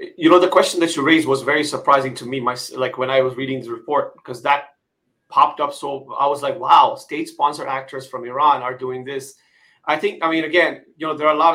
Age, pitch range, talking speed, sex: 30-49, 130-155 Hz, 245 wpm, male